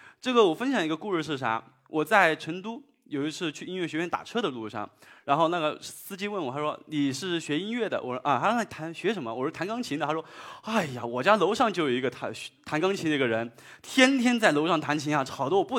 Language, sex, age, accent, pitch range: Chinese, male, 20-39, native, 135-205 Hz